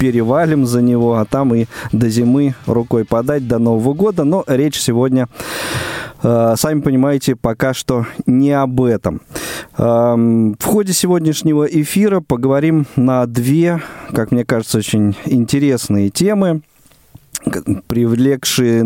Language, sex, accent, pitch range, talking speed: Russian, male, native, 115-145 Hz, 120 wpm